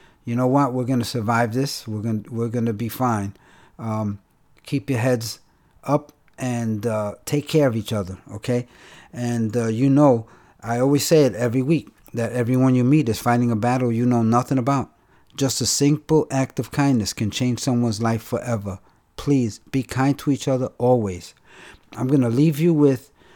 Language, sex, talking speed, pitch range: English, male, 185 wpm, 115-140 Hz